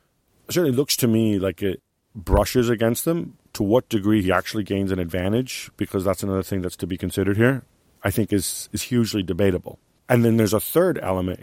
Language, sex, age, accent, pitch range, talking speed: English, male, 40-59, American, 95-110 Hz, 200 wpm